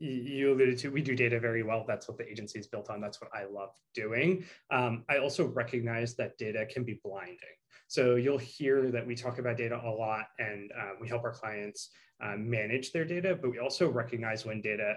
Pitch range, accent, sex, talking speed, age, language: 115-150 Hz, American, male, 220 wpm, 20-39, English